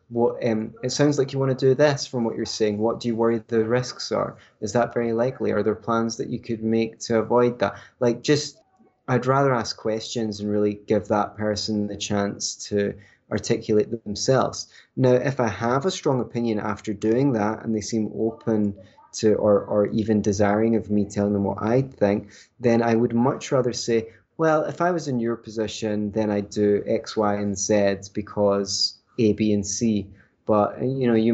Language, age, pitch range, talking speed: English, 20-39, 105-120 Hz, 200 wpm